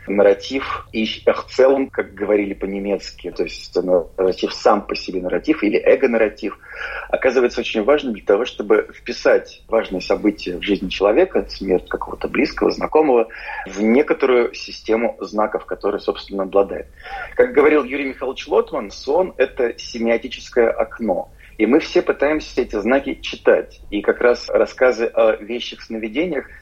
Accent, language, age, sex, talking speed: native, Russian, 30-49, male, 140 wpm